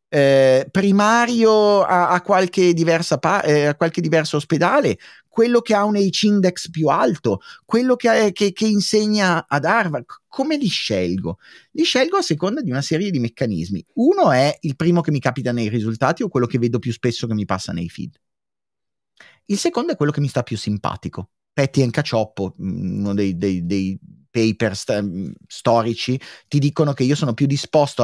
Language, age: Italian, 30-49